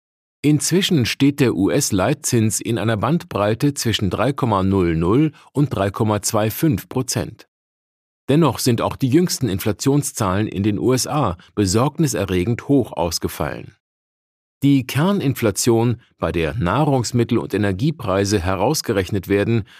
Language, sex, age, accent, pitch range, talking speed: German, male, 50-69, German, 100-140 Hz, 100 wpm